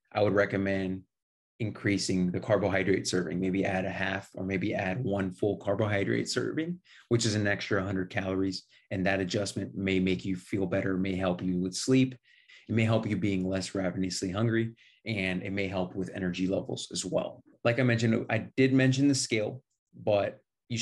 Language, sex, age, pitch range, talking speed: English, male, 30-49, 95-115 Hz, 185 wpm